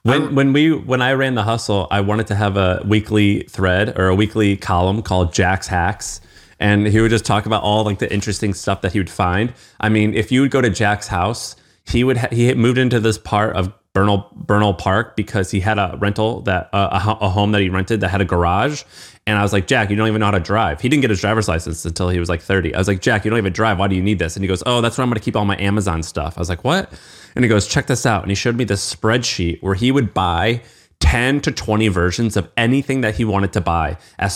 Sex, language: male, English